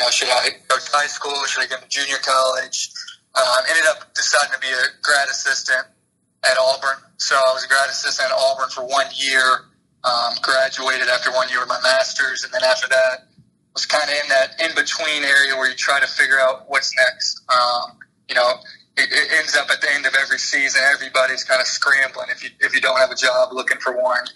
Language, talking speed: English, 225 wpm